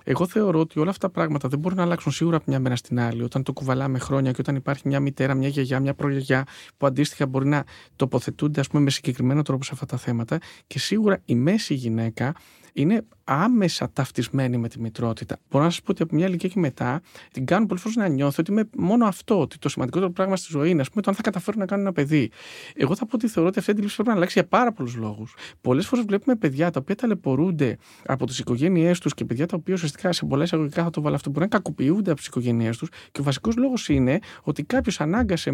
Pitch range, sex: 135-195 Hz, male